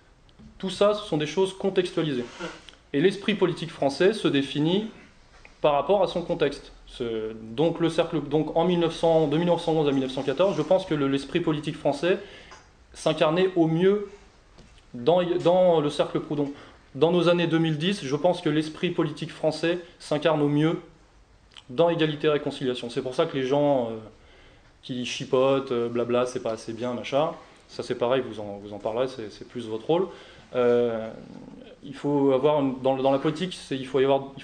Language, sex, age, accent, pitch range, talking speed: French, male, 20-39, French, 135-170 Hz, 180 wpm